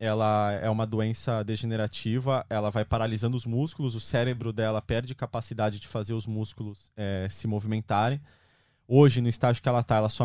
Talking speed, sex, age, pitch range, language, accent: 170 wpm, male, 20-39, 110-135 Hz, Portuguese, Brazilian